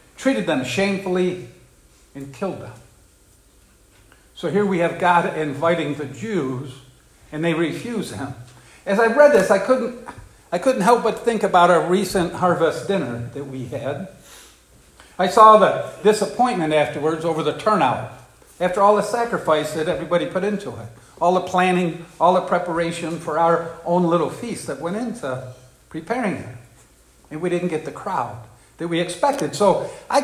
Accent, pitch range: American, 145-205 Hz